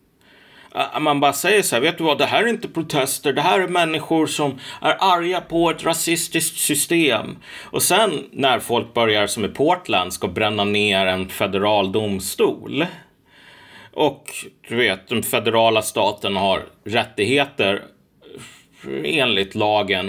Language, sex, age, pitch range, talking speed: Swedish, male, 30-49, 105-165 Hz, 145 wpm